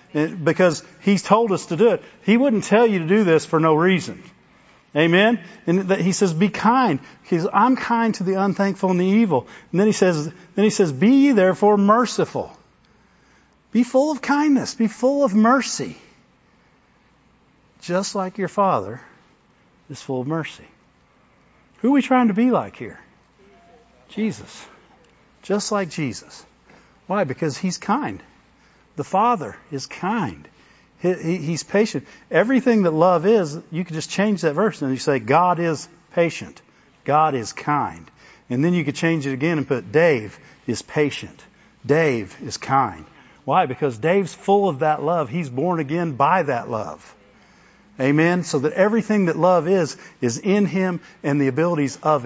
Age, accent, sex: 50-69, American, male